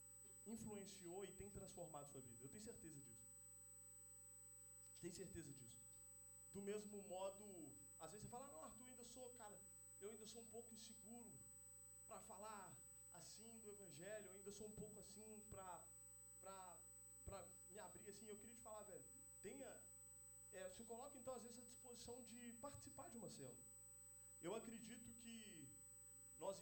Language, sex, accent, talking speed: Portuguese, male, Brazilian, 160 wpm